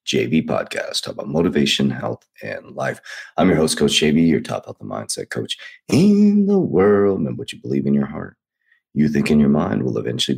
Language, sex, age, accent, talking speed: English, male, 30-49, American, 210 wpm